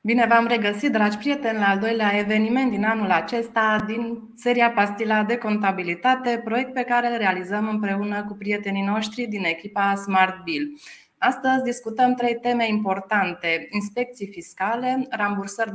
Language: Romanian